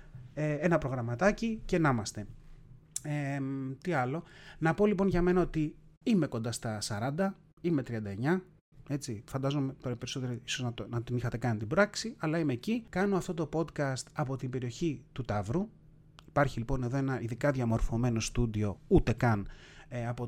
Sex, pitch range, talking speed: male, 120-160 Hz, 160 wpm